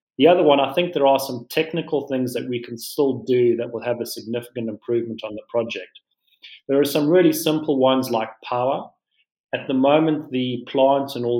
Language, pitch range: English, 115-135 Hz